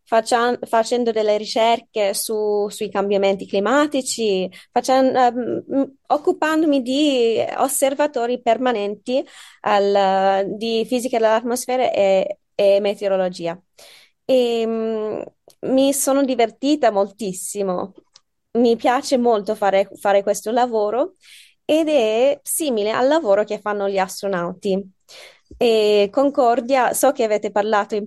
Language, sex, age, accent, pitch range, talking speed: Italian, female, 20-39, native, 200-255 Hz, 95 wpm